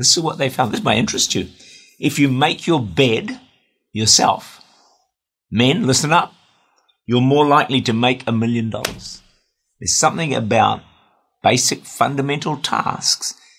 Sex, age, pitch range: male, 50-69, 105-135 Hz